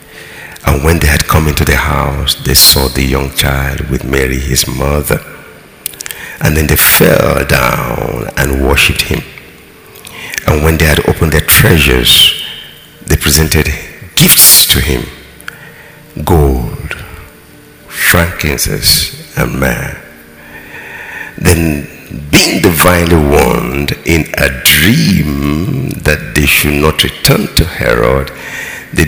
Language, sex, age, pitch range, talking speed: English, male, 60-79, 70-90 Hz, 115 wpm